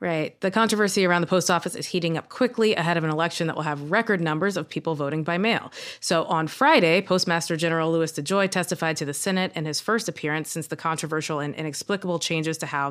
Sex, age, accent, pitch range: female, 20-39, American, 160-195 Hz